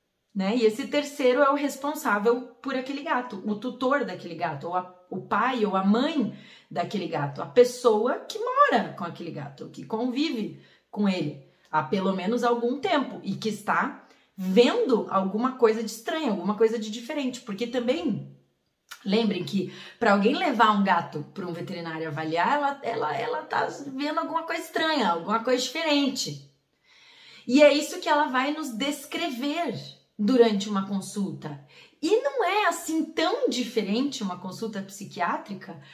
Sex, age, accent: female, 30-49, Brazilian